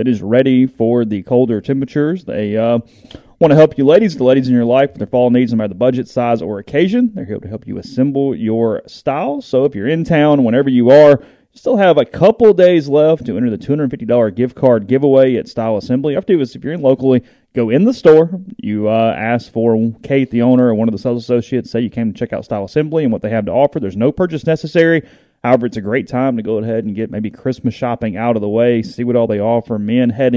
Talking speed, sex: 265 wpm, male